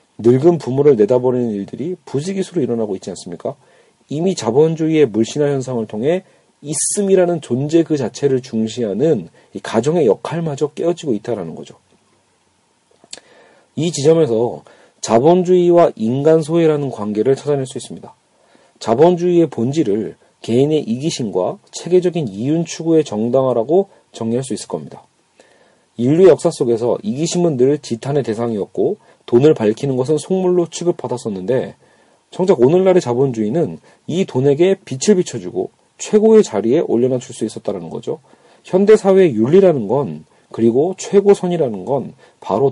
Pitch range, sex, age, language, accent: 120-175 Hz, male, 40-59, Korean, native